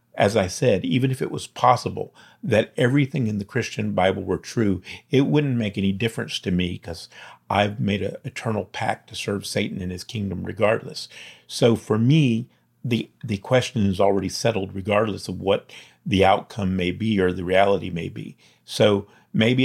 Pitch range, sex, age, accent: 95-115 Hz, male, 50-69, American